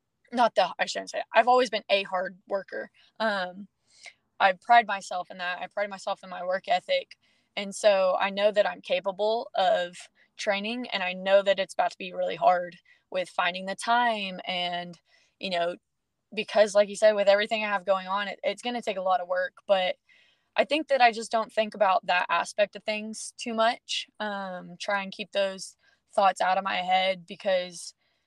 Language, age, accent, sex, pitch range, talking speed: English, 20-39, American, female, 185-220 Hz, 200 wpm